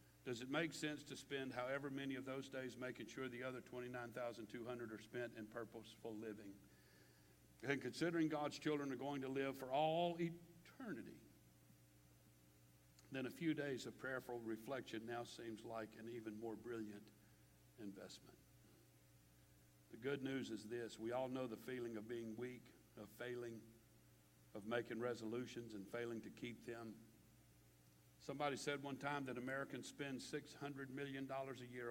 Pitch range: 105-130 Hz